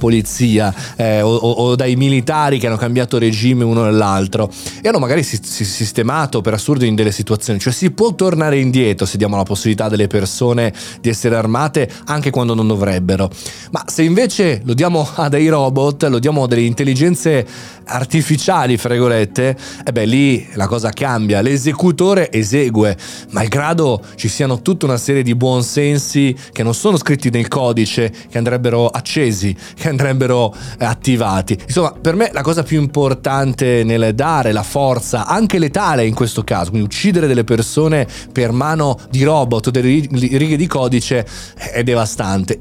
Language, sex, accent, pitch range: Italian, male, native, 115-145 Hz